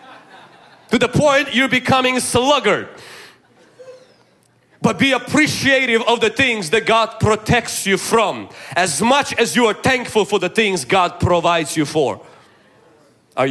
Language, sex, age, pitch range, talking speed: English, male, 30-49, 195-255 Hz, 140 wpm